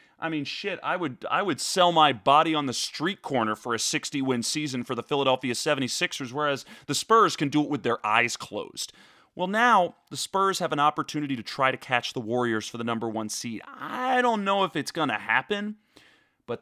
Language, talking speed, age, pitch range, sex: English, 215 wpm, 30-49, 120-170 Hz, male